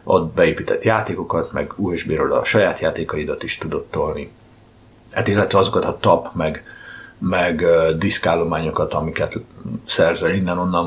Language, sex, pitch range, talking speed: Hungarian, male, 90-110 Hz, 115 wpm